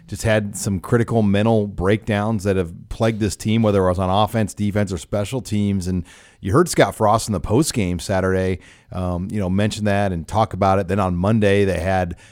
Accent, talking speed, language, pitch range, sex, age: American, 215 wpm, English, 95-115 Hz, male, 40-59